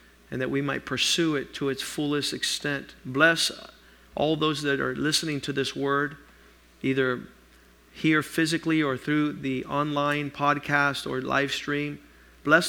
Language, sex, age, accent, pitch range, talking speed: English, male, 50-69, American, 145-180 Hz, 145 wpm